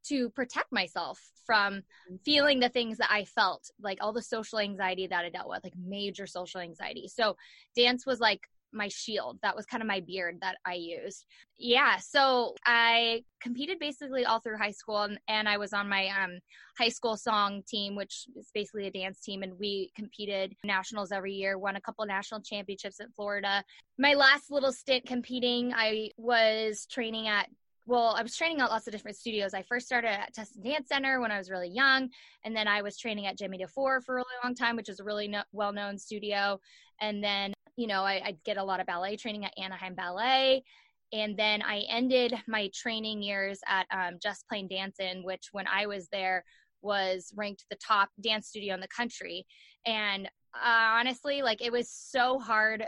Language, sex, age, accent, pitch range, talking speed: English, female, 20-39, American, 195-240 Hz, 200 wpm